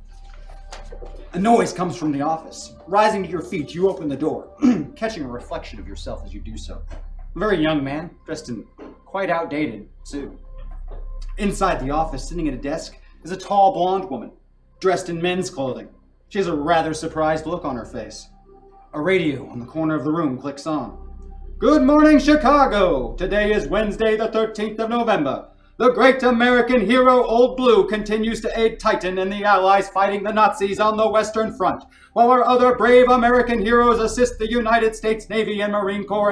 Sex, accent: male, American